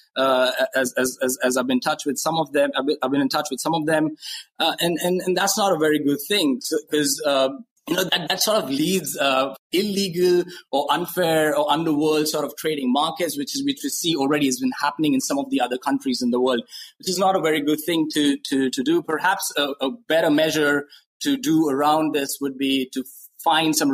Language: English